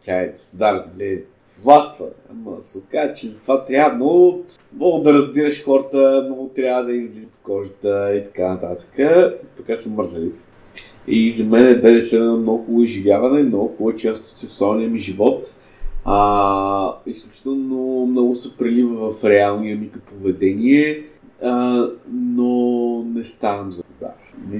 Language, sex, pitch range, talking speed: Bulgarian, male, 110-170 Hz, 140 wpm